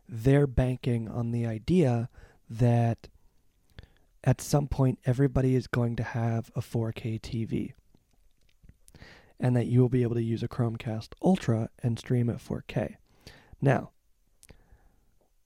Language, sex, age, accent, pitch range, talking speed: English, male, 20-39, American, 115-135 Hz, 130 wpm